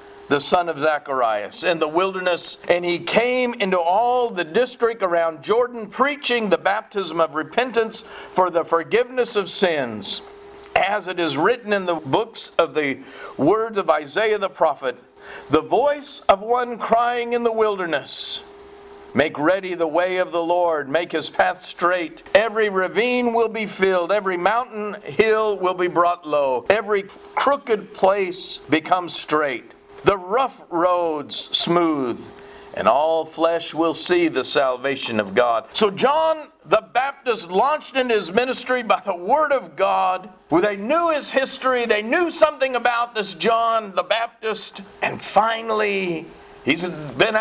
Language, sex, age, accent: English, male, 50-69, American